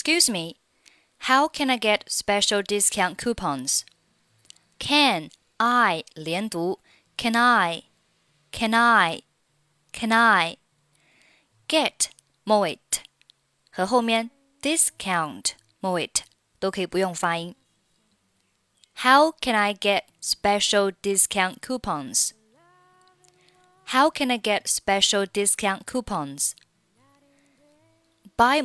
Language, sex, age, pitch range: Chinese, female, 20-39, 170-230 Hz